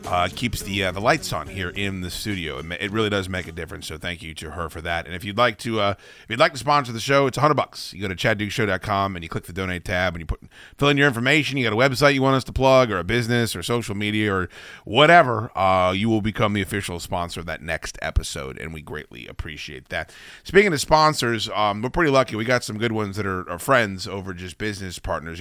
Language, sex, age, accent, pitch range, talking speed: English, male, 30-49, American, 90-120 Hz, 260 wpm